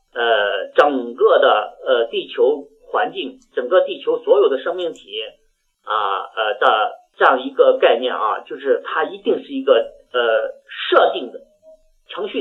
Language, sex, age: Chinese, male, 50-69